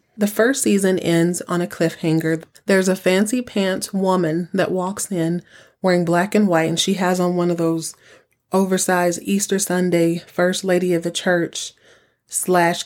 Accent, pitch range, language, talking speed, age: American, 170-200 Hz, English, 165 wpm, 30-49